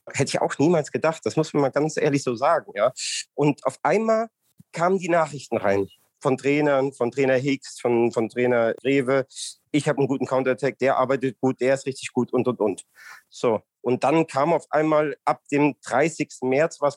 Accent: German